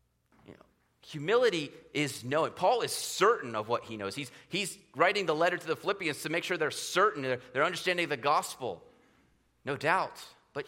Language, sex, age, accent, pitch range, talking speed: English, male, 30-49, American, 105-160 Hz, 175 wpm